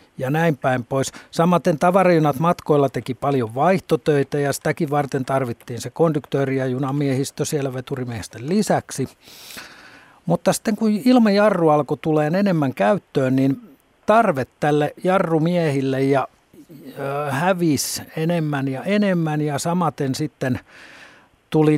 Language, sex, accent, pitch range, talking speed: Finnish, male, native, 130-165 Hz, 115 wpm